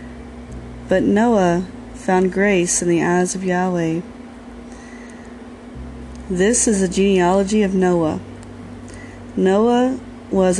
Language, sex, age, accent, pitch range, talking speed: English, female, 30-49, American, 160-205 Hz, 95 wpm